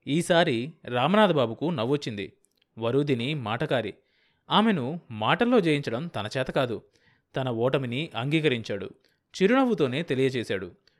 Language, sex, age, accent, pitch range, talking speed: Telugu, male, 30-49, native, 120-160 Hz, 85 wpm